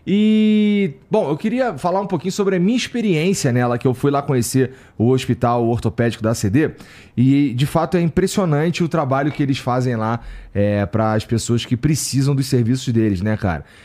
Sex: male